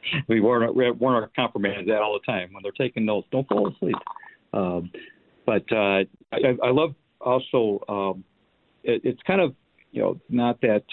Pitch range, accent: 100-125 Hz, American